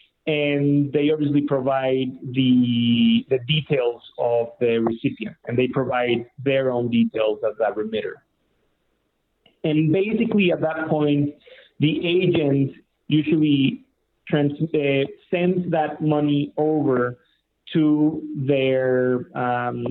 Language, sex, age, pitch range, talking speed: English, male, 30-49, 130-160 Hz, 110 wpm